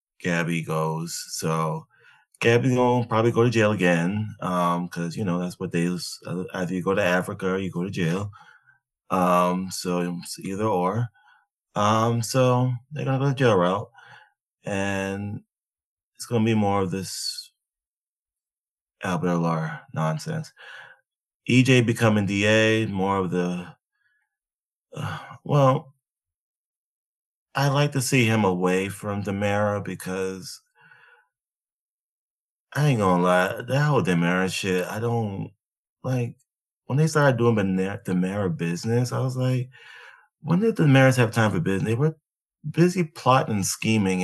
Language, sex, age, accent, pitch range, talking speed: English, male, 20-39, American, 90-130 Hz, 140 wpm